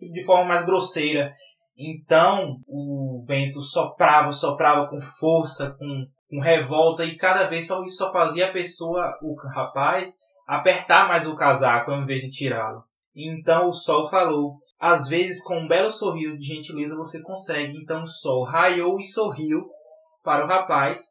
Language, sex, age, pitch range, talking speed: Portuguese, male, 20-39, 140-175 Hz, 160 wpm